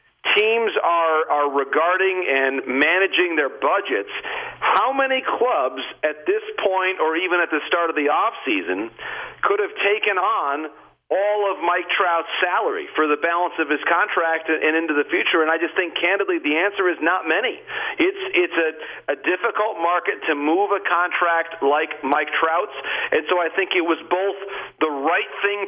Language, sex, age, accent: English, male, 50-69, American